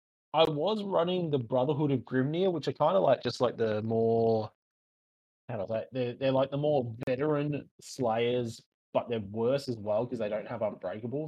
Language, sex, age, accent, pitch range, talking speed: English, male, 20-39, Australian, 110-135 Hz, 195 wpm